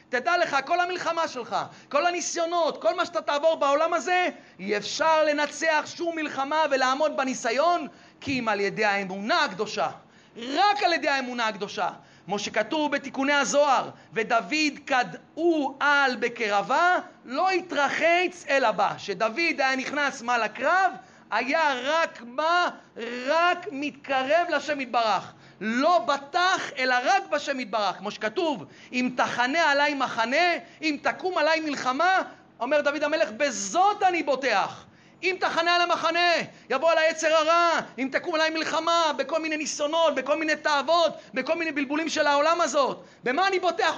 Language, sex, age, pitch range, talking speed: Hebrew, male, 40-59, 260-325 Hz, 140 wpm